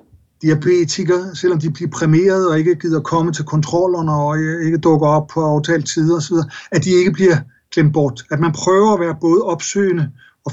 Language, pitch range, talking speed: Danish, 150-185 Hz, 190 wpm